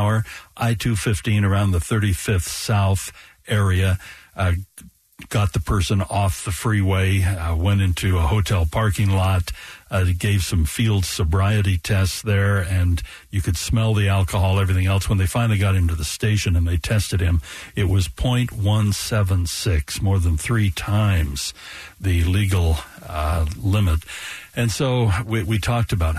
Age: 60-79